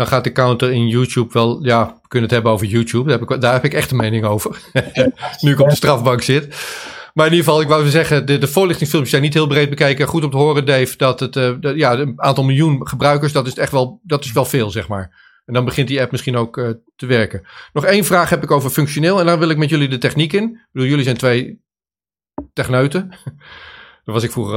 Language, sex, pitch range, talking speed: Dutch, male, 125-155 Hz, 255 wpm